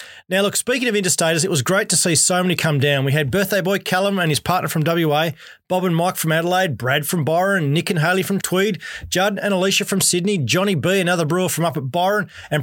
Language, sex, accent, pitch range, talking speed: English, male, Australian, 150-190 Hz, 240 wpm